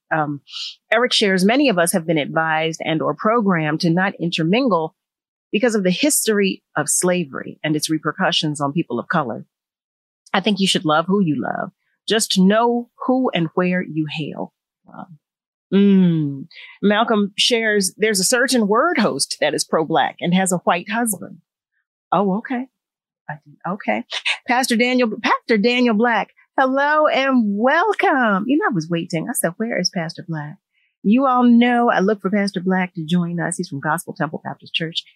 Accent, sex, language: American, female, English